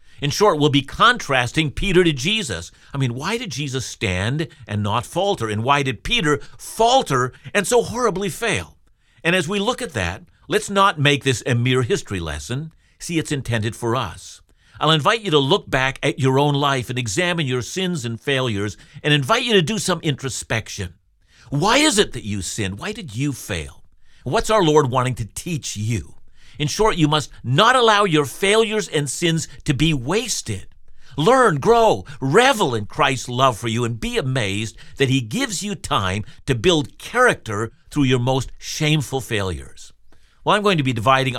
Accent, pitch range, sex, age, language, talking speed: American, 115-170 Hz, male, 50-69, English, 185 wpm